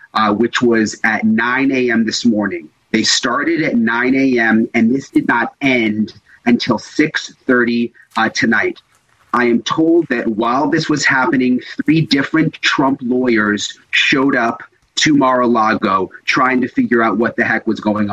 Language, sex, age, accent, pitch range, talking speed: English, male, 30-49, American, 110-135 Hz, 155 wpm